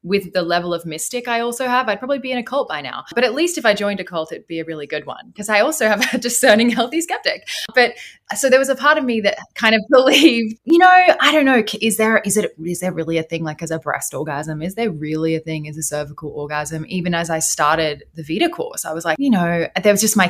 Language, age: English, 10-29